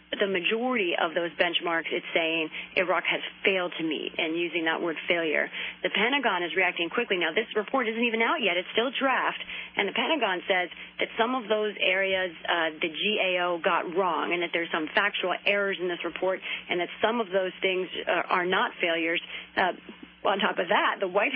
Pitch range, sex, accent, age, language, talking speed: 185-230 Hz, female, American, 30-49, English, 200 wpm